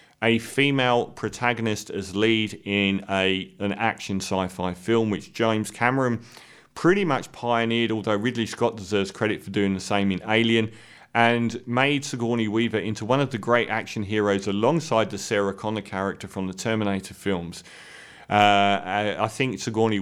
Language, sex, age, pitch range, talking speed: English, male, 40-59, 100-120 Hz, 160 wpm